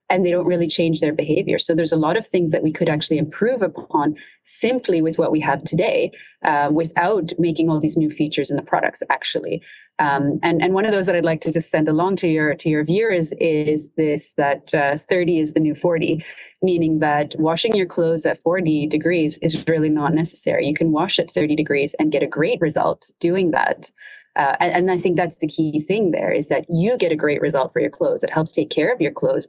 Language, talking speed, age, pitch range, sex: English, 235 wpm, 30-49, 150-175 Hz, female